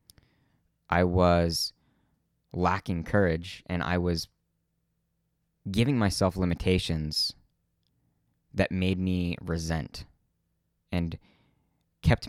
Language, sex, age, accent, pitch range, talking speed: English, male, 20-39, American, 80-100 Hz, 80 wpm